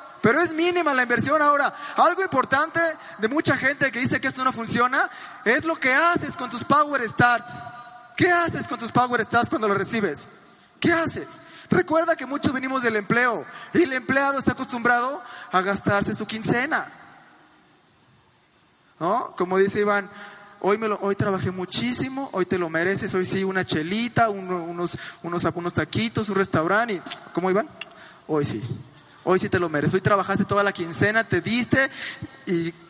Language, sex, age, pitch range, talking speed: Spanish, male, 20-39, 185-265 Hz, 170 wpm